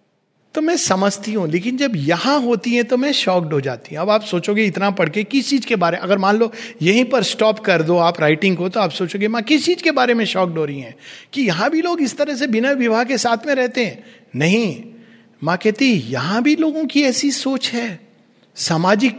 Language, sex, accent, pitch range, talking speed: Hindi, male, native, 175-250 Hz, 230 wpm